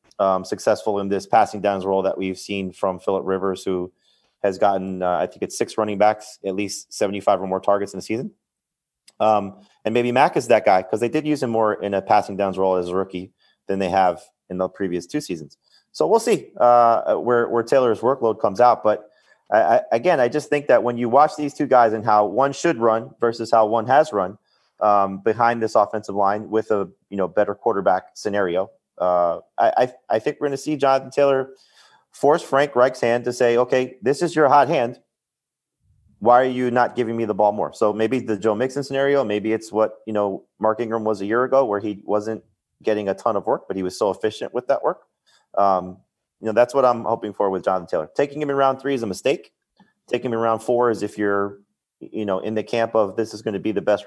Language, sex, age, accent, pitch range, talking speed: English, male, 30-49, American, 100-125 Hz, 235 wpm